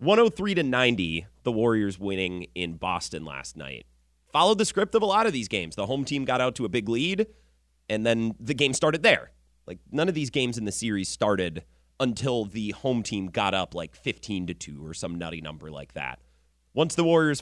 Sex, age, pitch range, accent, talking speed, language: male, 30-49, 85-135 Hz, American, 205 wpm, English